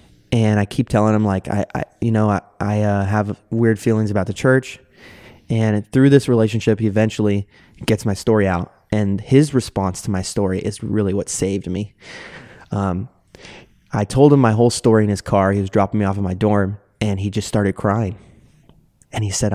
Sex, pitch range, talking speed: male, 95-110 Hz, 205 wpm